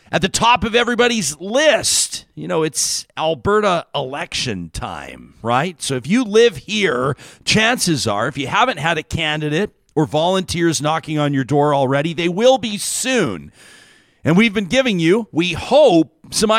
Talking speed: 165 wpm